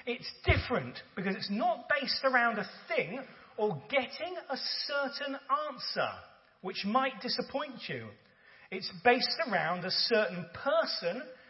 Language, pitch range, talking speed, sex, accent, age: English, 185-255 Hz, 125 wpm, male, British, 40-59